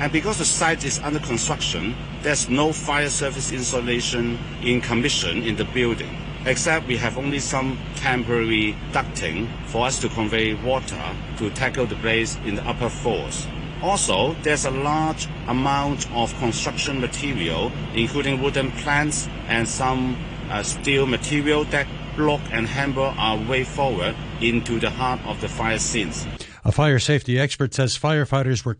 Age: 60-79